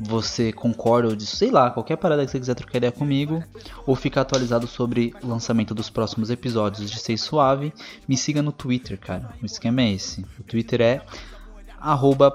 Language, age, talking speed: Portuguese, 20-39, 190 wpm